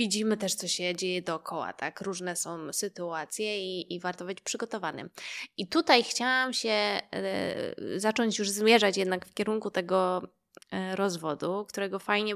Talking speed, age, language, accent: 135 wpm, 20-39, Polish, native